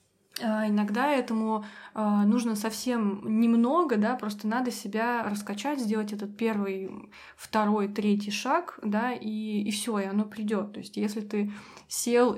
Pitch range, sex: 205-240 Hz, female